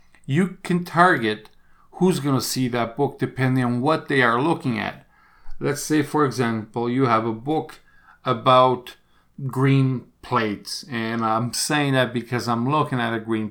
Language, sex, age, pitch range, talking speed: English, male, 50-69, 115-140 Hz, 160 wpm